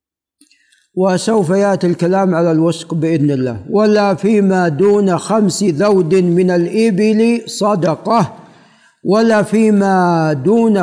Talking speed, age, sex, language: 100 wpm, 60-79, male, Arabic